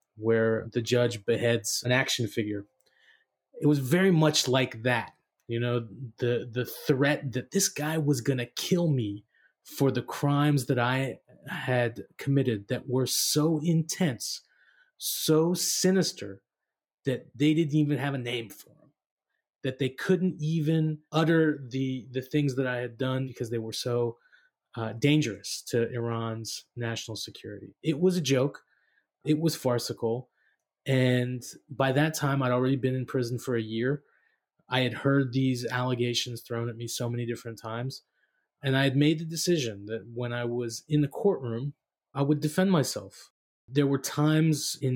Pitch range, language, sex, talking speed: 120-145 Hz, English, male, 160 wpm